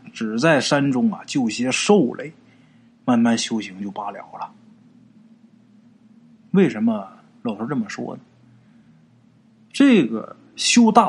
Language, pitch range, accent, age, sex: Chinese, 165-235 Hz, native, 20-39, male